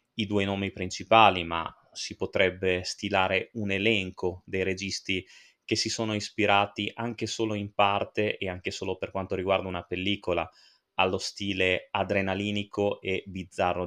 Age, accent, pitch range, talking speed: 20-39, native, 95-110 Hz, 145 wpm